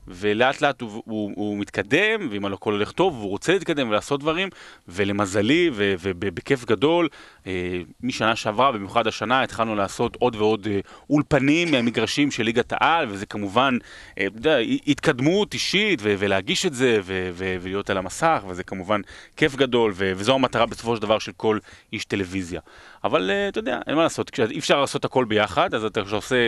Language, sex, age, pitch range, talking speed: Hebrew, male, 30-49, 100-130 Hz, 170 wpm